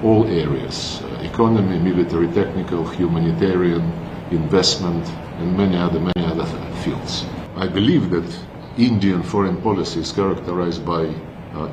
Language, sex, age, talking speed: Bengali, male, 50-69, 120 wpm